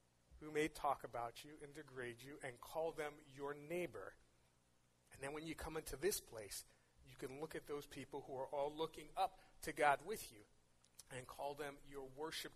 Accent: American